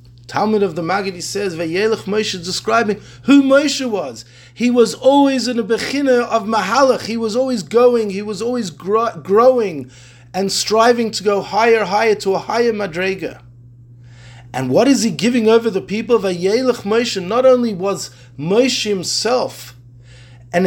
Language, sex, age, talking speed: English, male, 30-49, 155 wpm